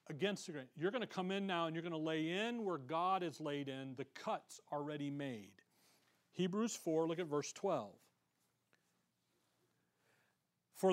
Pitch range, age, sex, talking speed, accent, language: 160-215 Hz, 40-59, male, 170 wpm, American, English